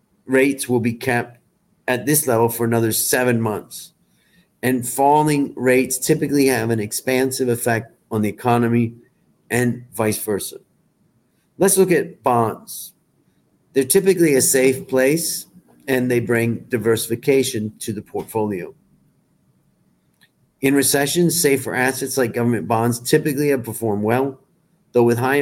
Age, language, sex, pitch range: 40-59, Thai, male, 115-135 Hz